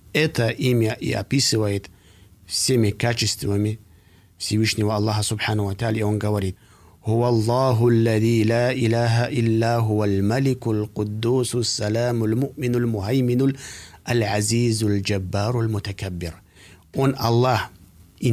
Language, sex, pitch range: Russian, male, 95-120 Hz